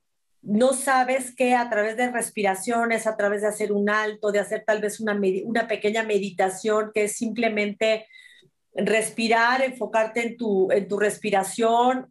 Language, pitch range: Spanish, 205-245 Hz